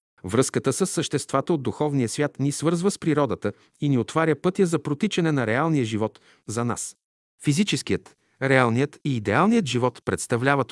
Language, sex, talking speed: Bulgarian, male, 150 wpm